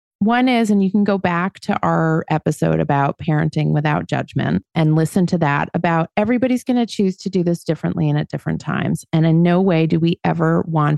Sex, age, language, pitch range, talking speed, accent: female, 30-49, English, 155-195 Hz, 215 wpm, American